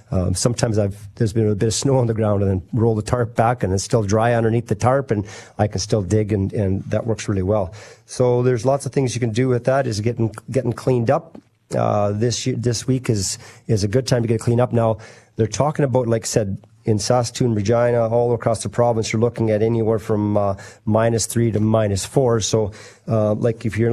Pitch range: 105-120 Hz